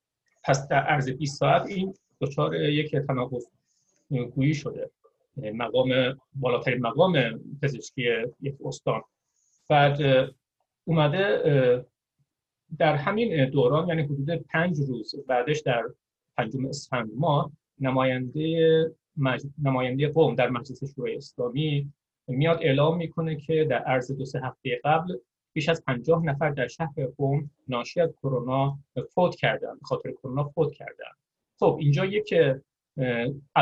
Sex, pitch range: male, 130-160 Hz